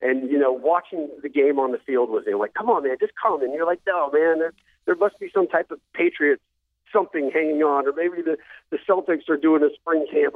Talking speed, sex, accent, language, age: 250 wpm, male, American, English, 50-69